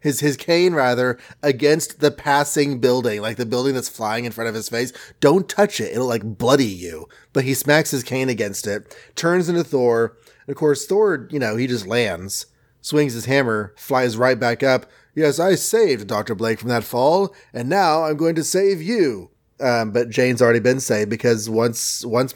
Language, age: English, 30-49